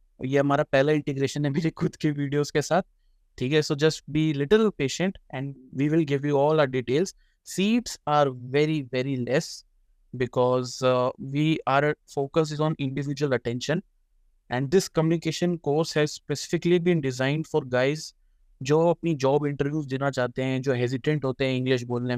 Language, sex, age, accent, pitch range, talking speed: Hindi, male, 20-39, native, 130-155 Hz, 90 wpm